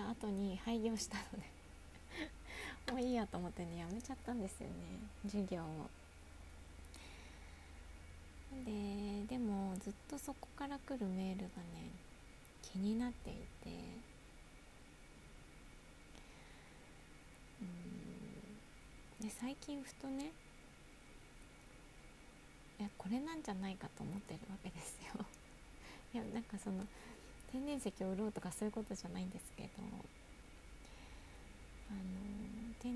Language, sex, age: Japanese, female, 20-39